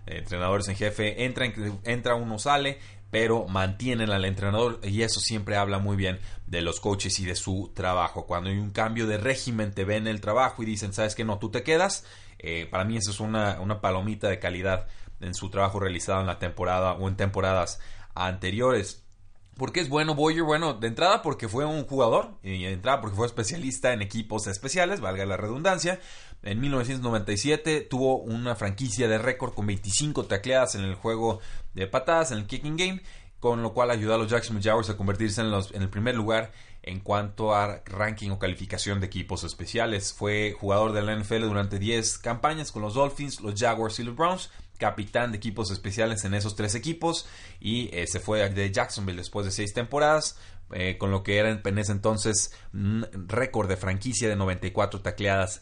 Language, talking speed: Spanish, 190 wpm